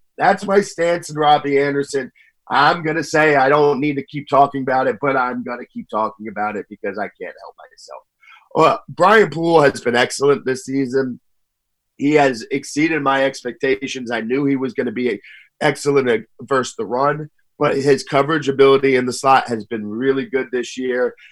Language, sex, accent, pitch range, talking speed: English, male, American, 125-145 Hz, 195 wpm